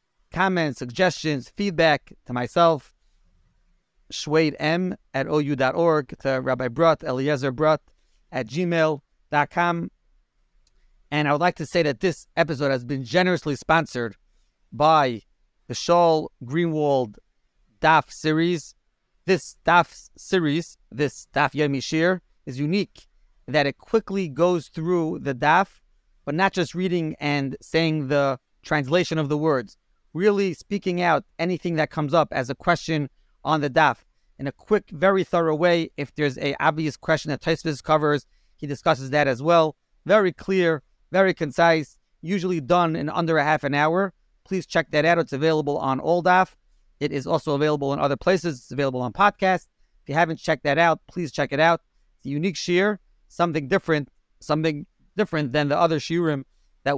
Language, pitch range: English, 145-175 Hz